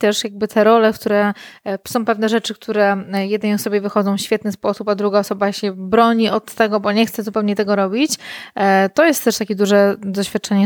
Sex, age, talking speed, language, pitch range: female, 20-39, 190 wpm, Polish, 195-225 Hz